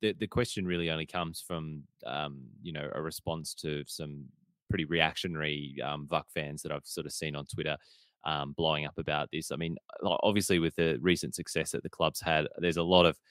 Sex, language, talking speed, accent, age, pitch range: male, English, 205 wpm, Australian, 20-39, 80-95 Hz